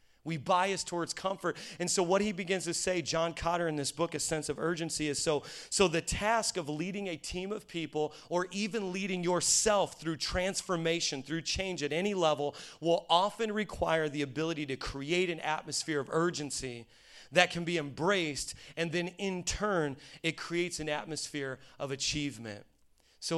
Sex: male